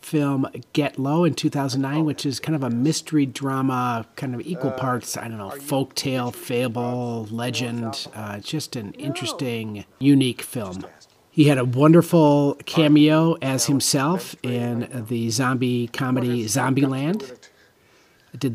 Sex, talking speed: male, 135 wpm